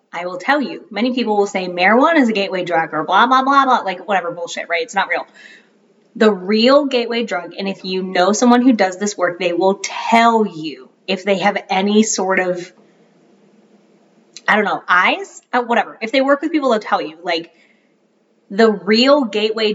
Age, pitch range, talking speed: 20-39, 185-230 Hz, 200 wpm